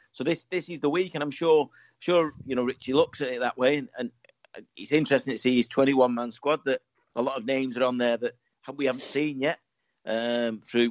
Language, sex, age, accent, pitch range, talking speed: English, male, 40-59, British, 115-135 Hz, 225 wpm